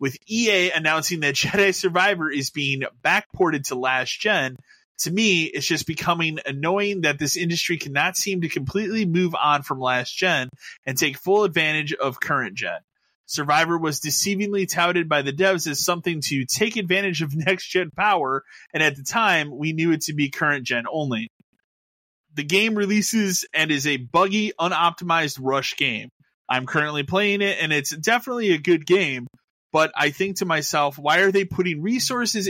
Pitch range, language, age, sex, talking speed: 140-185 Hz, English, 20-39, male, 165 wpm